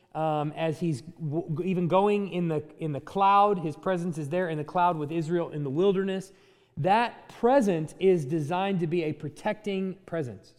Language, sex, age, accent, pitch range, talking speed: English, male, 30-49, American, 150-205 Hz, 180 wpm